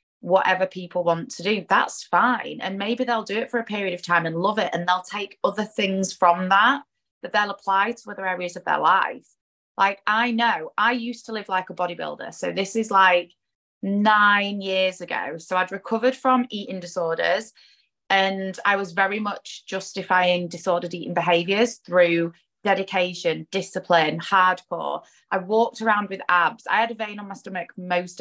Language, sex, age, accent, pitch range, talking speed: English, female, 20-39, British, 185-220 Hz, 180 wpm